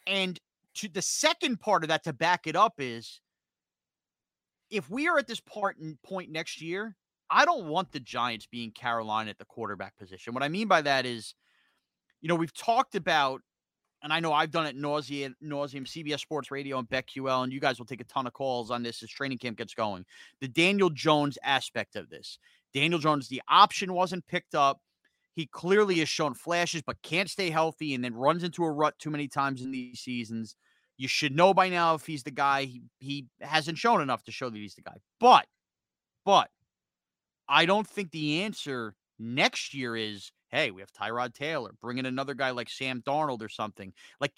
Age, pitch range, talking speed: 30-49, 125-170 Hz, 200 wpm